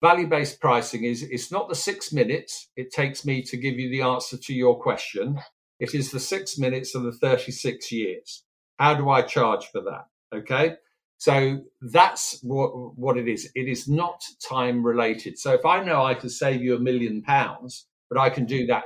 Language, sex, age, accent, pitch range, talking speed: English, male, 50-69, British, 125-170 Hz, 195 wpm